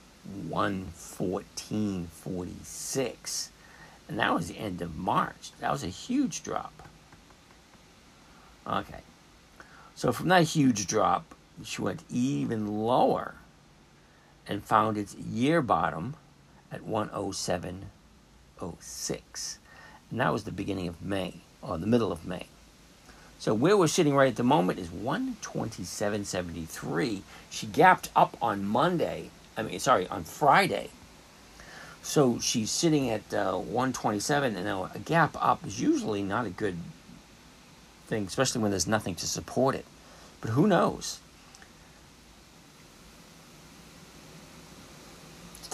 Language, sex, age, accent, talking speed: English, male, 60-79, American, 115 wpm